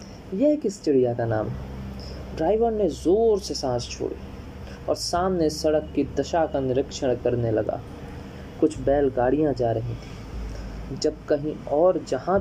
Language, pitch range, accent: Hindi, 120-155 Hz, native